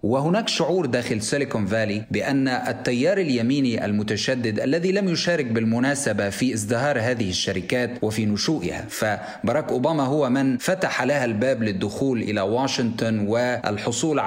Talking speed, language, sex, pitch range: 125 wpm, Arabic, male, 110-145 Hz